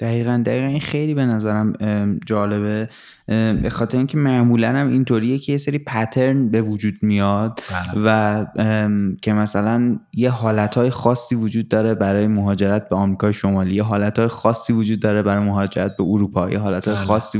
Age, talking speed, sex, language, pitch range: 20-39, 150 wpm, male, English, 105-115 Hz